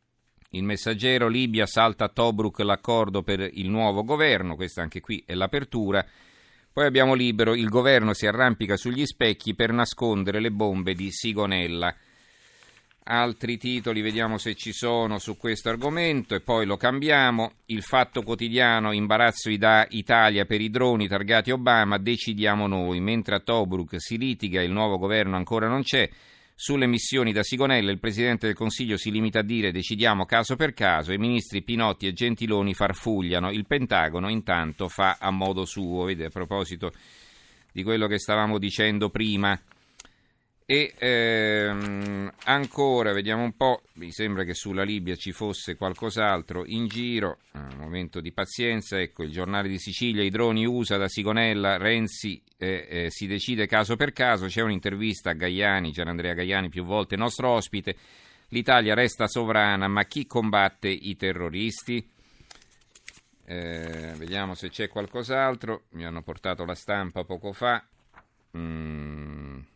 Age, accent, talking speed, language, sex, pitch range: 50-69, native, 150 wpm, Italian, male, 95-115 Hz